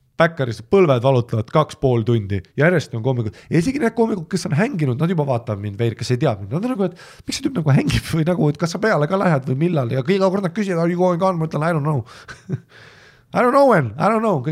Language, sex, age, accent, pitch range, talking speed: English, male, 30-49, Finnish, 125-180 Hz, 250 wpm